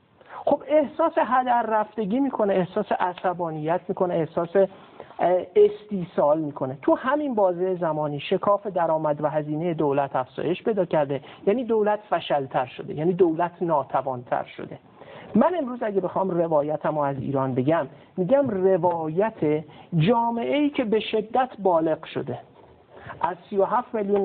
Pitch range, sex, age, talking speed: 155-210 Hz, male, 50-69, 125 wpm